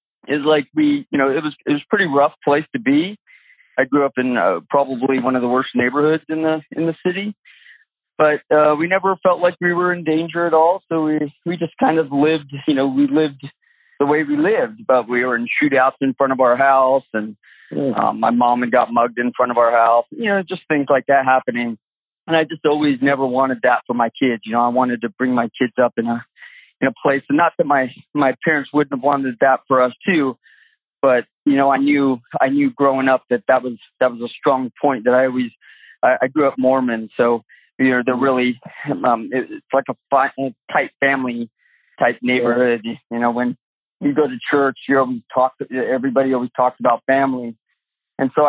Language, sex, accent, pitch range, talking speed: English, male, American, 125-155 Hz, 225 wpm